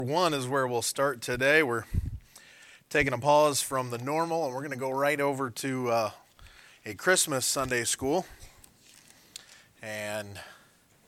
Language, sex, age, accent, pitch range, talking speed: English, male, 30-49, American, 115-145 Hz, 145 wpm